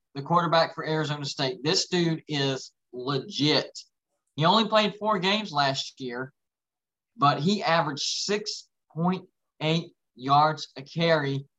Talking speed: 120 wpm